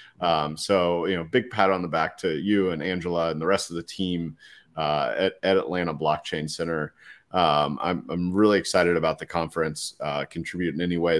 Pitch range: 90-125 Hz